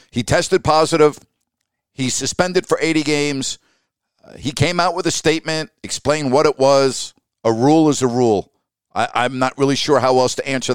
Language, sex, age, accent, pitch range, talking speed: English, male, 50-69, American, 125-155 Hz, 180 wpm